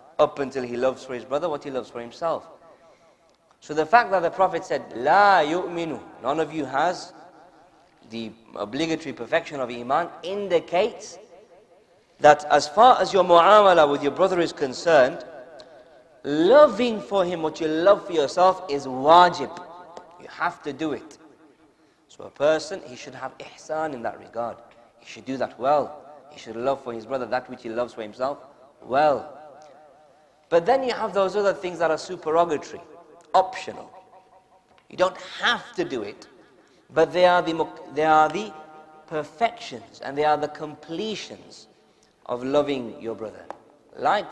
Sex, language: male, English